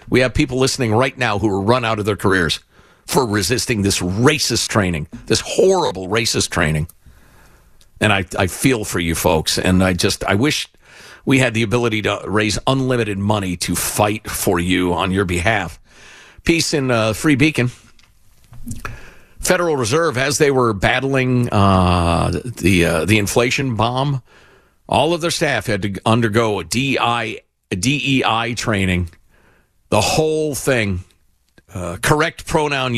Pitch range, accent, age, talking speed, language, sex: 100-140 Hz, American, 50-69, 155 wpm, English, male